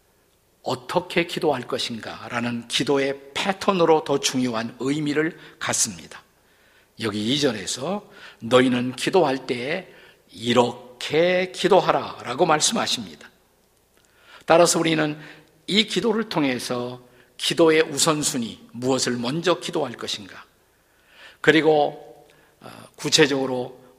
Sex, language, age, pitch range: male, Korean, 50-69, 125-160 Hz